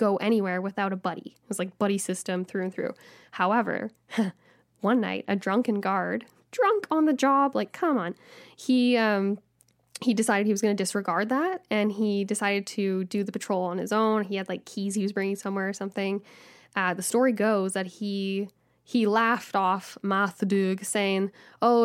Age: 10-29